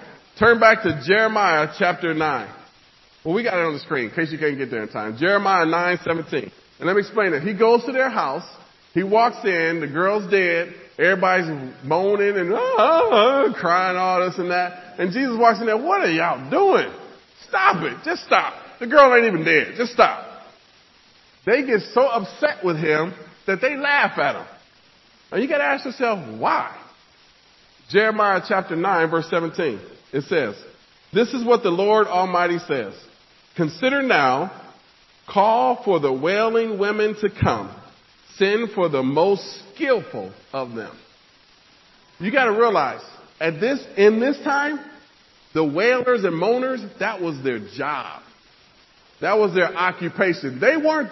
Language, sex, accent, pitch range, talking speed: English, male, American, 175-245 Hz, 165 wpm